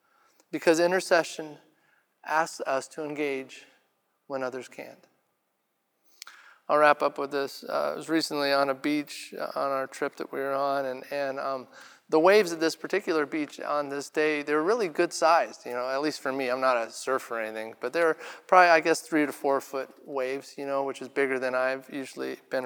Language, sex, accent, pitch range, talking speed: English, male, American, 135-160 Hz, 200 wpm